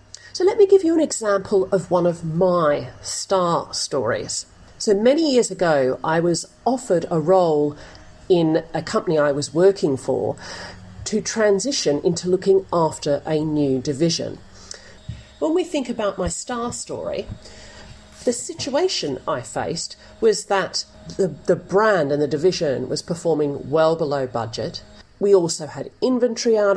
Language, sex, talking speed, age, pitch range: English, female, 150 wpm, 40-59, 155-215 Hz